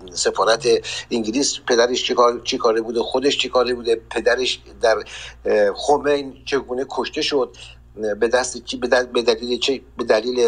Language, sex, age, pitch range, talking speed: Persian, male, 60-79, 125-190 Hz, 150 wpm